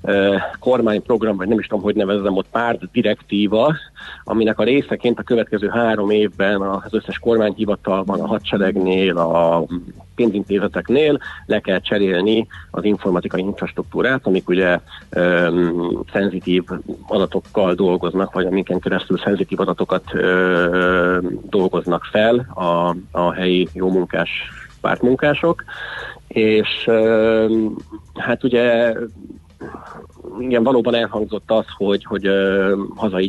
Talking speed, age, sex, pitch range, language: 110 wpm, 40-59, male, 90-110 Hz, Hungarian